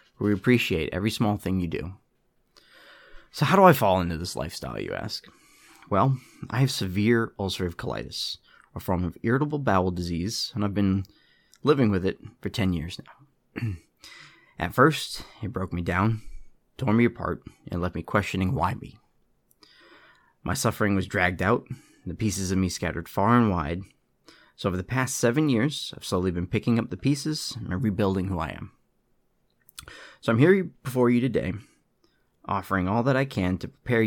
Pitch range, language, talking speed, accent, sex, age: 90-120 Hz, English, 175 wpm, American, male, 30-49